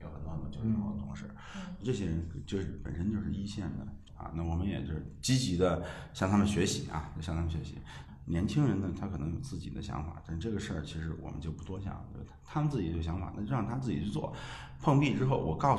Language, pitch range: Chinese, 75-95 Hz